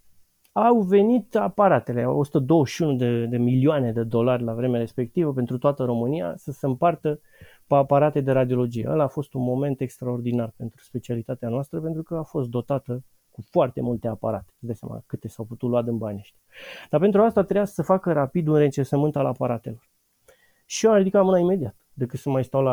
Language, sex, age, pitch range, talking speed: Romanian, male, 30-49, 125-175 Hz, 185 wpm